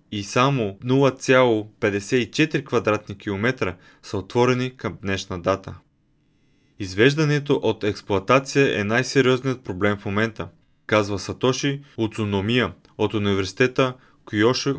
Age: 30-49